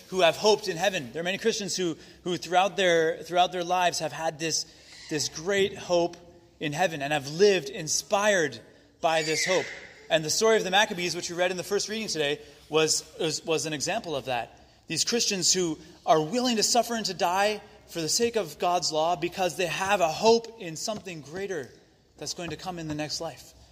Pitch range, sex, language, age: 150-185 Hz, male, English, 30-49